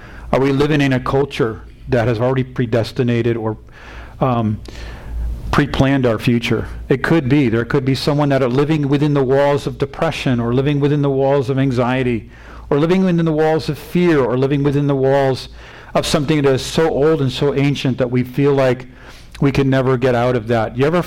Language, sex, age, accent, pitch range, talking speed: English, male, 50-69, American, 120-145 Hz, 205 wpm